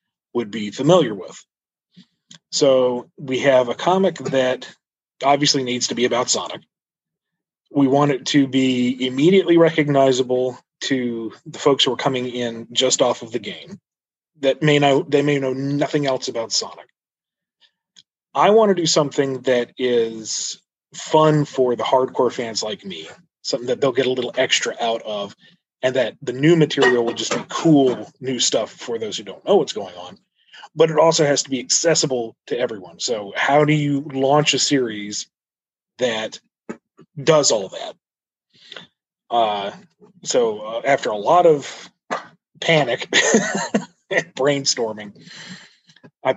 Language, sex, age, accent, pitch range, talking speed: English, male, 30-49, American, 125-155 Hz, 155 wpm